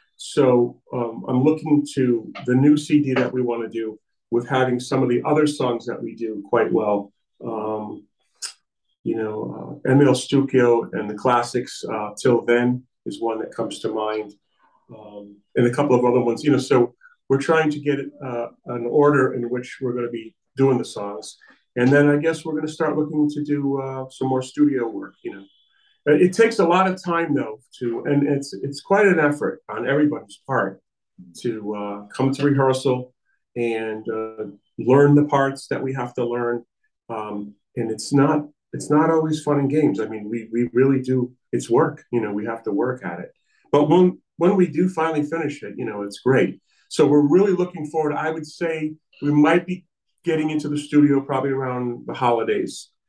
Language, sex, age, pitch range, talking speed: English, male, 40-59, 120-150 Hz, 200 wpm